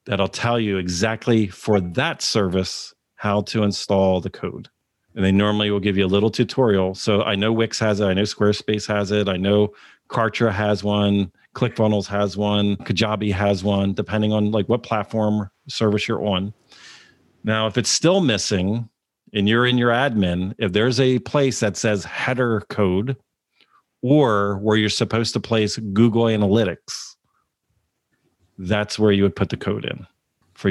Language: English